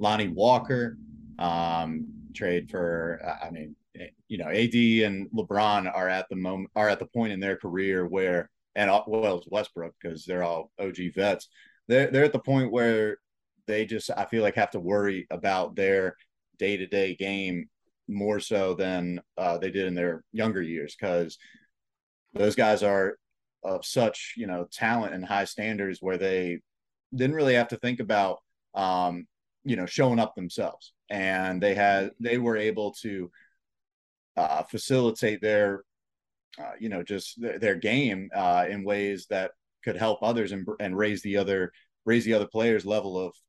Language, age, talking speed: English, 30-49, 170 wpm